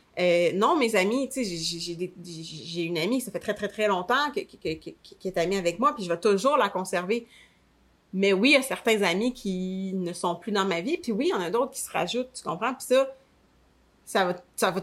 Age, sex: 30-49, female